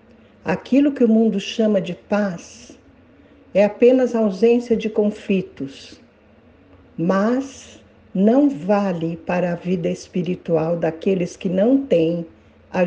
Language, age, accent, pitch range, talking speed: Portuguese, 60-79, Brazilian, 175-235 Hz, 115 wpm